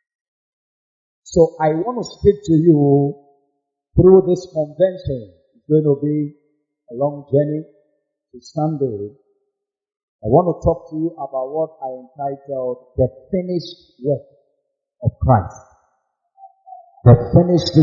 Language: English